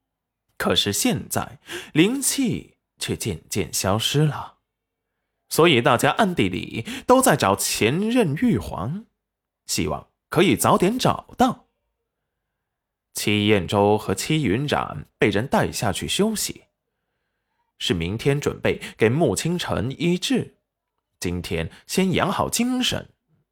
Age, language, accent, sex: 20-39, Chinese, native, male